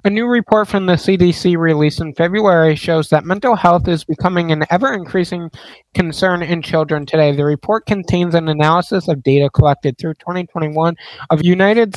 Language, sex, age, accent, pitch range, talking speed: English, male, 20-39, American, 145-185 Hz, 165 wpm